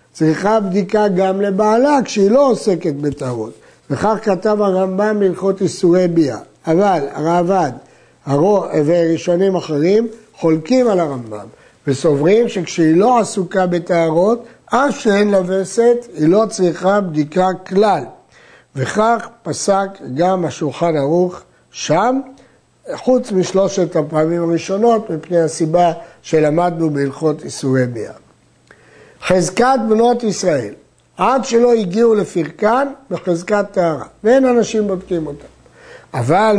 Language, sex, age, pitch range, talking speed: Hebrew, male, 60-79, 165-215 Hz, 105 wpm